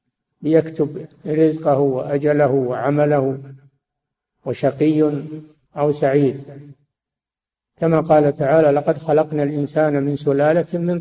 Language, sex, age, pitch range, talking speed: Arabic, male, 60-79, 140-165 Hz, 85 wpm